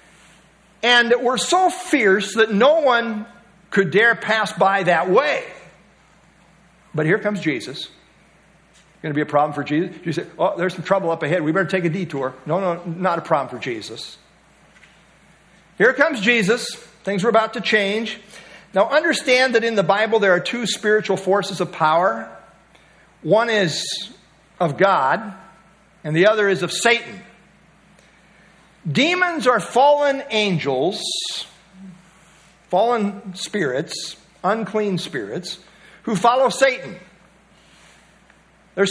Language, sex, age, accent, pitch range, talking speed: English, male, 50-69, American, 180-225 Hz, 135 wpm